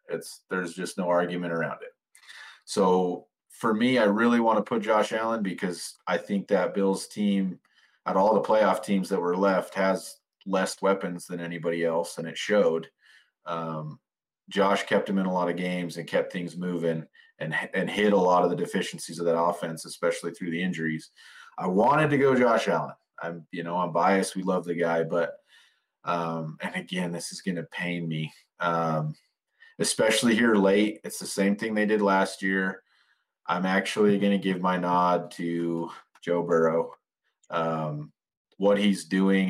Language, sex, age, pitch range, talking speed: English, male, 30-49, 85-95 Hz, 180 wpm